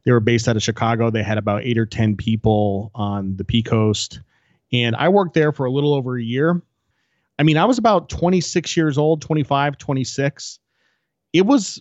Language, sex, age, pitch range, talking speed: English, male, 30-49, 110-145 Hz, 200 wpm